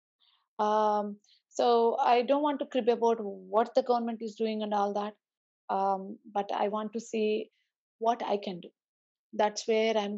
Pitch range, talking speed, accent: 200-230 Hz, 170 wpm, native